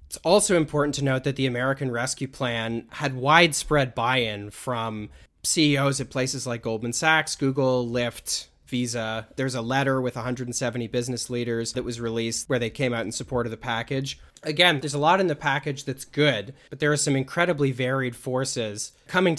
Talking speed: 185 wpm